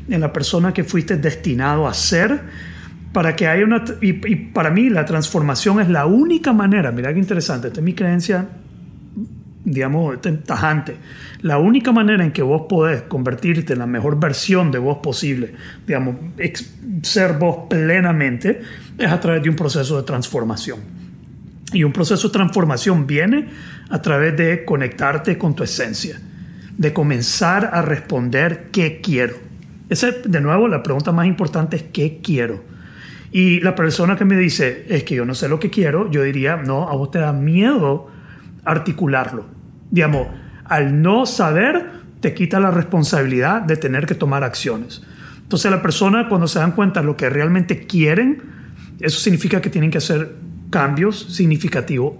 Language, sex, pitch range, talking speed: Spanish, male, 145-185 Hz, 165 wpm